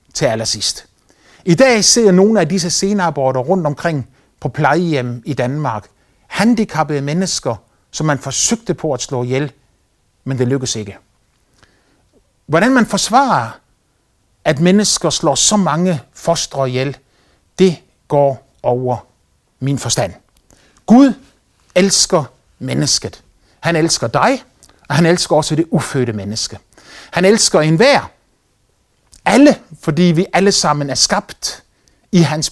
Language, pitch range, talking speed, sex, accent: Danish, 125-180 Hz, 125 wpm, male, native